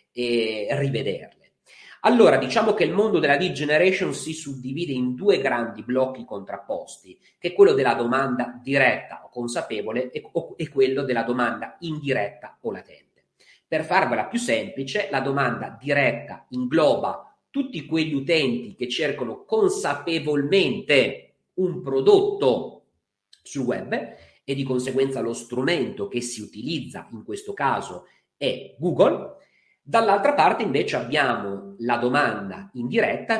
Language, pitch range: Italian, 125-190 Hz